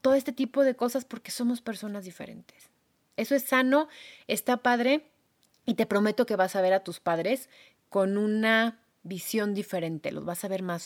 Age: 30-49